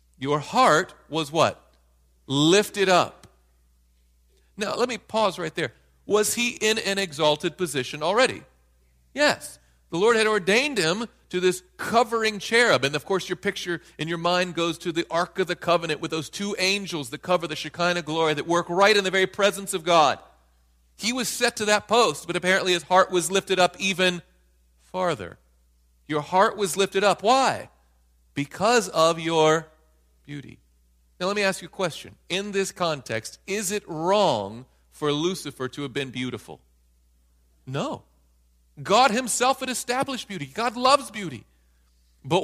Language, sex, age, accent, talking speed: English, male, 40-59, American, 165 wpm